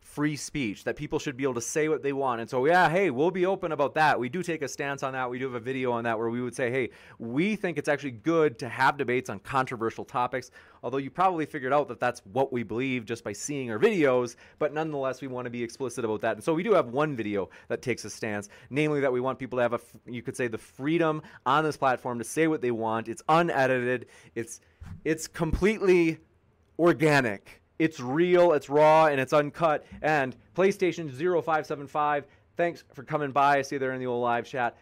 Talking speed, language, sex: 235 wpm, English, male